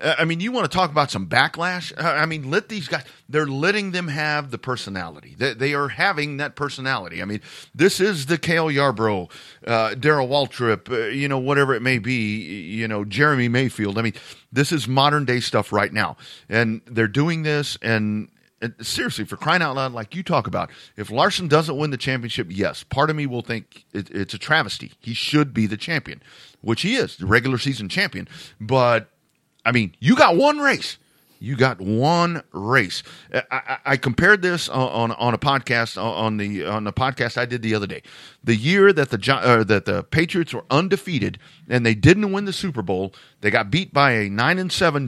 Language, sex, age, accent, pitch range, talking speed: English, male, 40-59, American, 115-150 Hz, 205 wpm